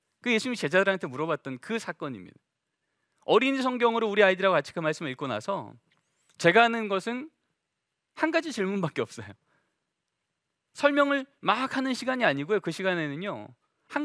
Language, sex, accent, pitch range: Korean, male, native, 150-240 Hz